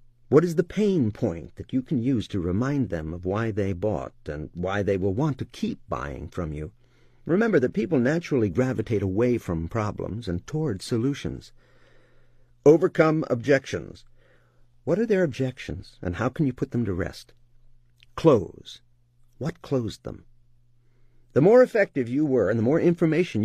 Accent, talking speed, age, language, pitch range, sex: American, 165 wpm, 50-69, English, 100-130 Hz, male